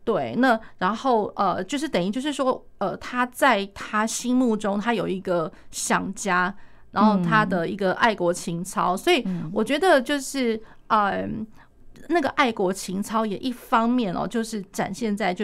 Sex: female